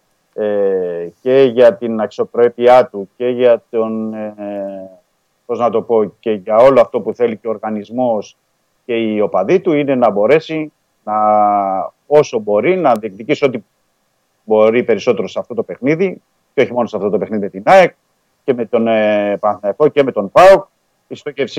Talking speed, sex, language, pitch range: 170 wpm, male, Greek, 105-135 Hz